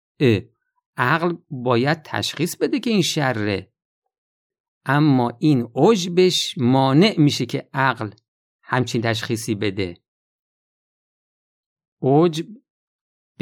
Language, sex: Persian, male